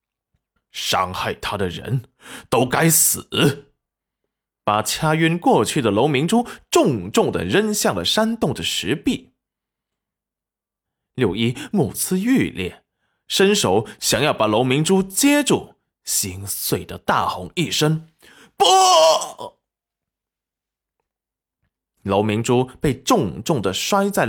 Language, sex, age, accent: Chinese, male, 20-39, native